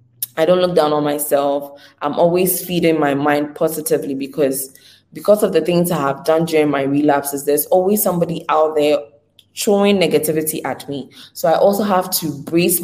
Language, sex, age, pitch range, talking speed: English, female, 20-39, 145-170 Hz, 180 wpm